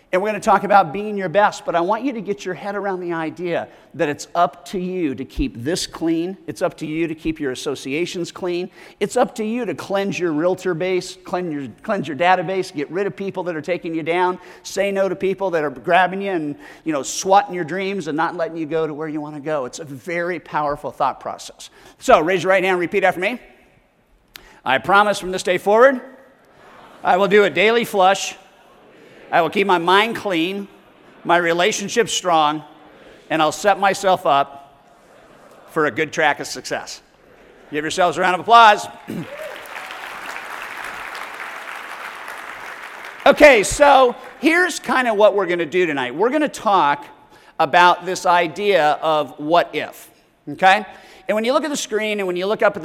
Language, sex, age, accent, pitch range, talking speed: English, male, 50-69, American, 160-200 Hz, 195 wpm